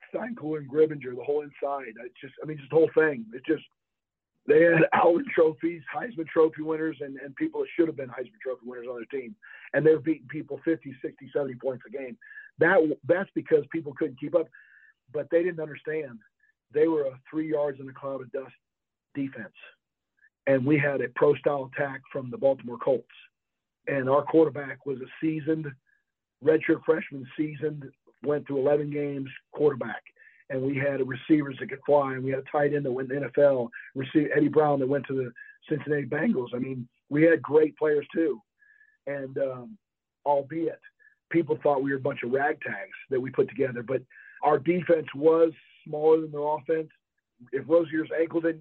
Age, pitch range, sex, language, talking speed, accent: 50-69, 140-165 Hz, male, English, 190 wpm, American